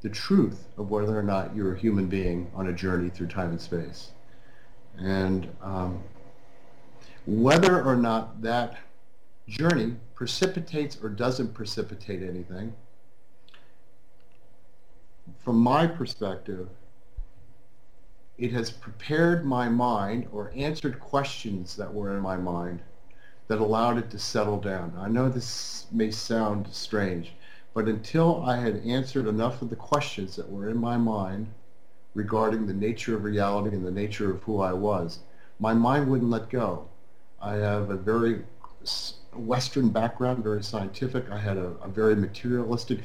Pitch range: 100-125 Hz